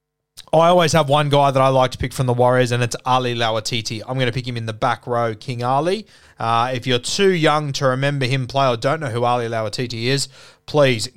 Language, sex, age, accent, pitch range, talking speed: English, male, 20-39, Australian, 125-155 Hz, 240 wpm